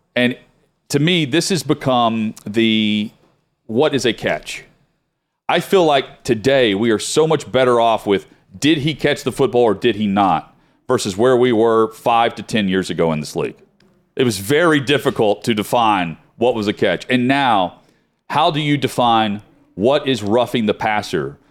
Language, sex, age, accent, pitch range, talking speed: English, male, 40-59, American, 105-135 Hz, 180 wpm